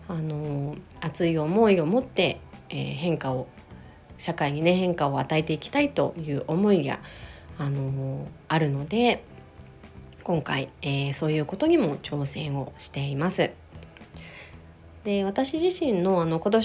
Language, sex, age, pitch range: Japanese, female, 30-49, 150-220 Hz